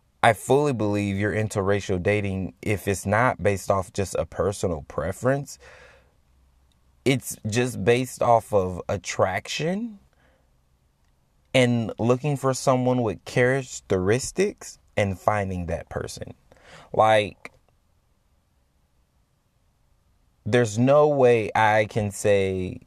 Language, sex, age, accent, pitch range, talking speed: English, male, 20-39, American, 90-120 Hz, 100 wpm